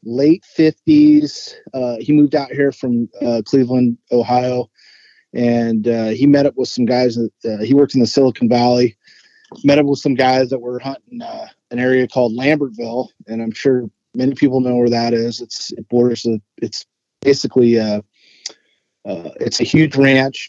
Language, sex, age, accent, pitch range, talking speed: English, male, 30-49, American, 115-135 Hz, 180 wpm